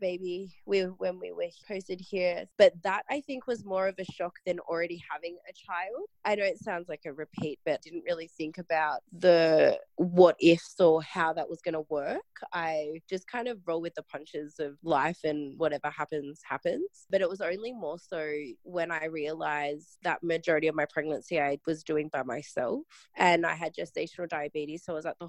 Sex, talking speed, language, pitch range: female, 200 wpm, English, 150-180 Hz